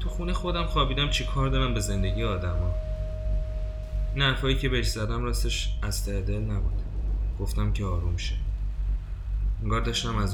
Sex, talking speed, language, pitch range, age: male, 140 wpm, Persian, 85-105 Hz, 20-39